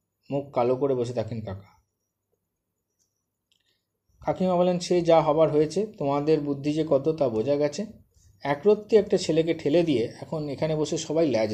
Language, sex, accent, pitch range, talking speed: Bengali, male, native, 110-150 Hz, 150 wpm